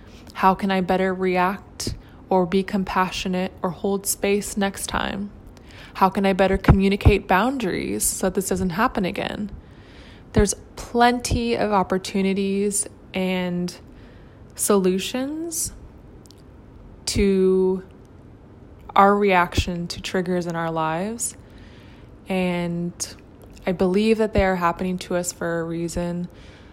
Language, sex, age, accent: English, female, 20-39, American